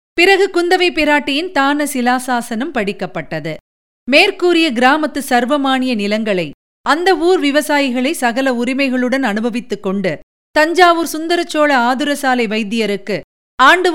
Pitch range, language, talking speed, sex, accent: 220-300 Hz, Tamil, 95 wpm, female, native